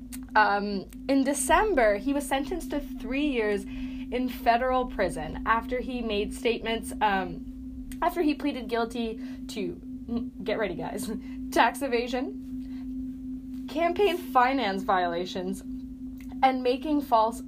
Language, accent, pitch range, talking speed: English, American, 225-270 Hz, 115 wpm